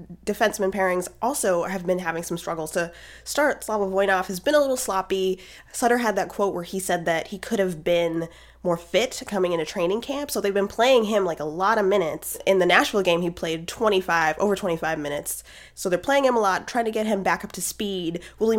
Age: 20-39